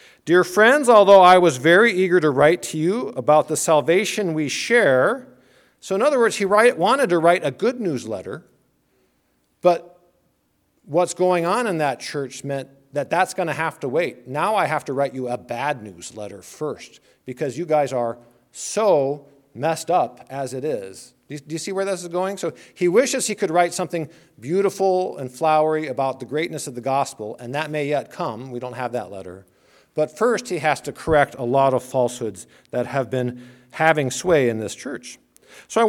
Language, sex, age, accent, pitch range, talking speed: English, male, 50-69, American, 130-180 Hz, 190 wpm